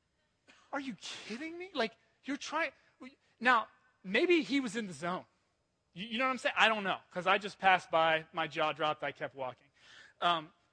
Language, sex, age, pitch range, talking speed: English, male, 20-39, 160-220 Hz, 195 wpm